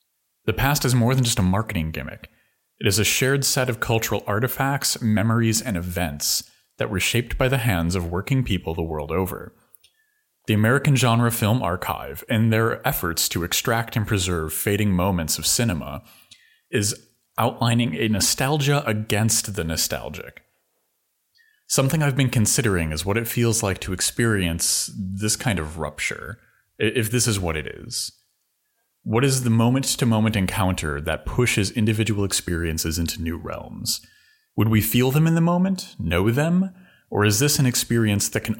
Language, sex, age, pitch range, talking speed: English, male, 30-49, 90-120 Hz, 165 wpm